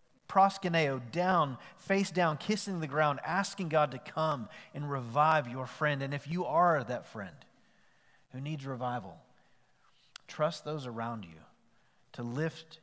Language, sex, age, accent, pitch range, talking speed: English, male, 40-59, American, 115-155 Hz, 135 wpm